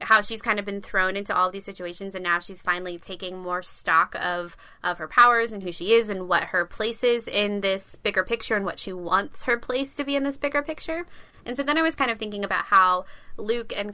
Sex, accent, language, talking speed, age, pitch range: female, American, English, 250 wpm, 20-39, 180-205 Hz